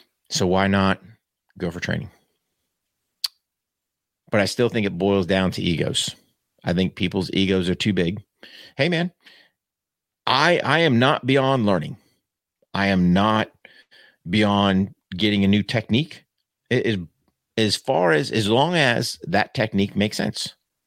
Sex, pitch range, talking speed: male, 95-125 Hz, 145 wpm